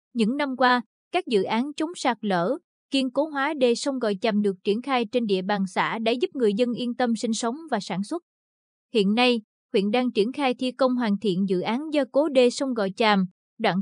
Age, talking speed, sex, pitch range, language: 20-39, 230 wpm, female, 210-260 Hz, Vietnamese